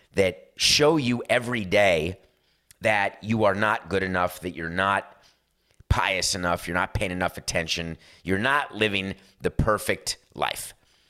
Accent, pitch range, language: American, 90-120 Hz, English